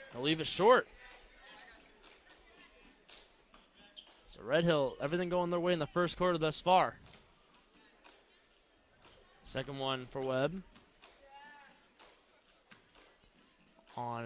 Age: 20-39